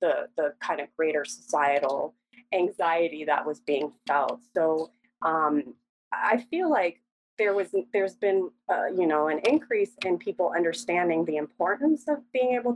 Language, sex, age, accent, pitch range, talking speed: English, female, 30-49, American, 160-240 Hz, 155 wpm